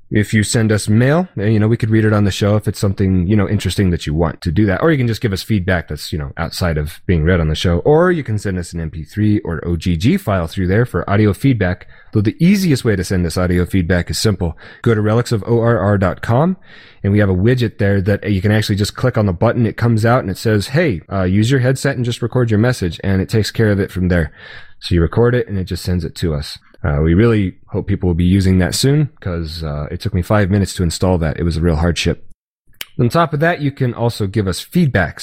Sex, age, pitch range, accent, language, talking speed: male, 30-49, 90-115 Hz, American, English, 265 wpm